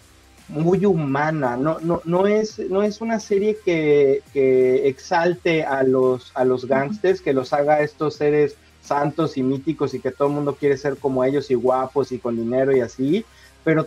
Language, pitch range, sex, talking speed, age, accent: Spanish, 135-180 Hz, male, 185 wpm, 40-59, Mexican